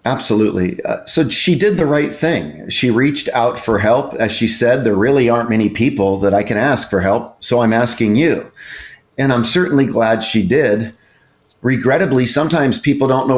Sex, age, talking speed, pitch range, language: male, 40-59, 190 wpm, 115-140 Hz, English